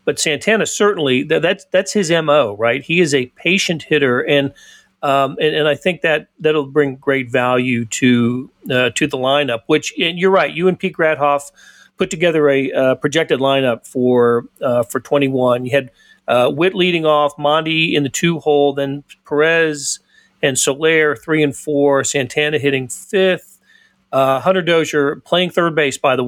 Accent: American